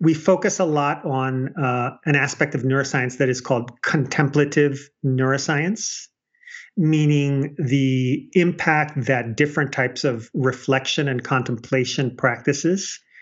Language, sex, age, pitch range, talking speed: English, male, 40-59, 130-150 Hz, 120 wpm